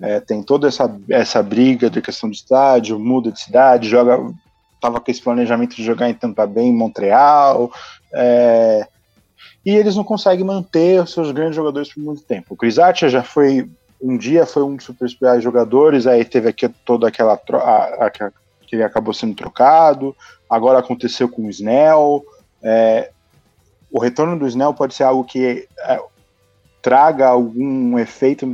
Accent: Brazilian